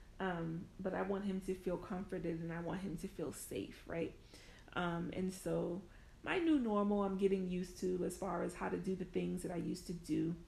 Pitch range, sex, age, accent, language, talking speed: 175-210 Hz, female, 30-49, American, English, 225 wpm